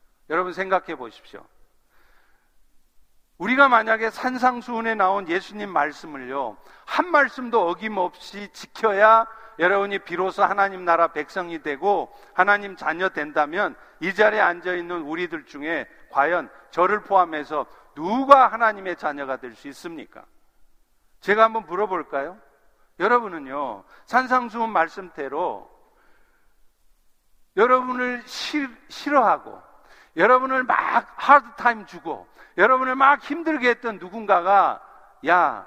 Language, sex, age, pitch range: Korean, male, 50-69, 190-245 Hz